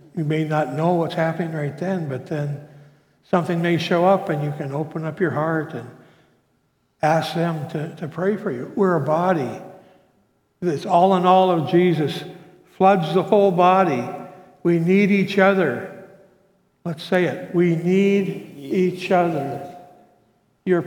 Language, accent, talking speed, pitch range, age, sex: English, American, 155 wpm, 145-180 Hz, 60-79, male